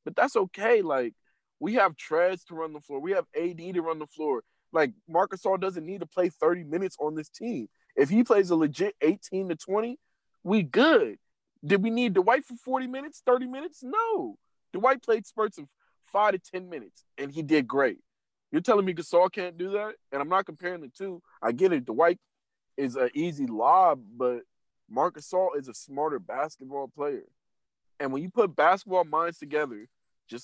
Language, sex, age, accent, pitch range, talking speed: English, male, 20-39, American, 145-195 Hz, 195 wpm